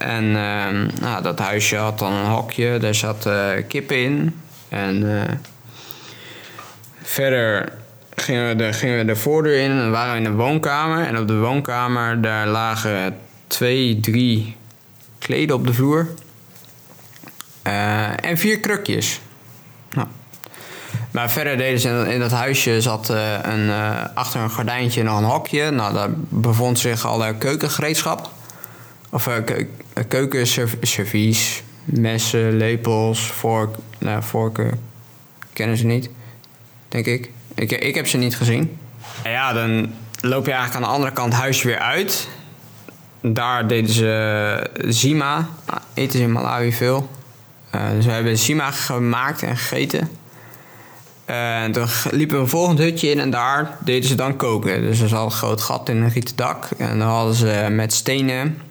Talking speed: 160 wpm